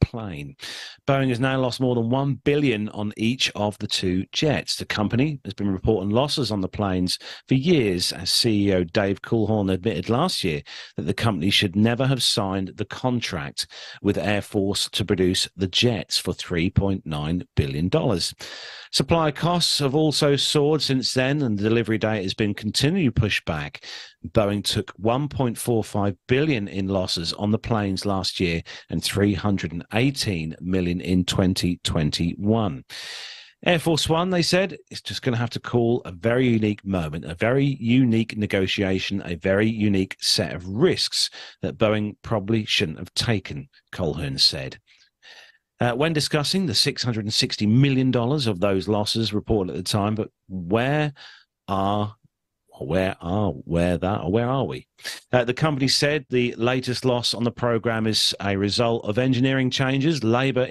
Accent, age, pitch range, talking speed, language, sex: British, 40-59, 100-125 Hz, 155 wpm, English, male